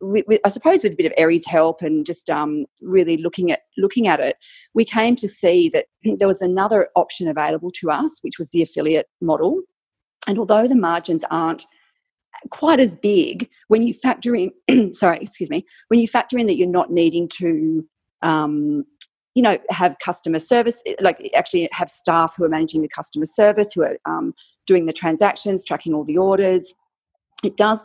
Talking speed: 185 wpm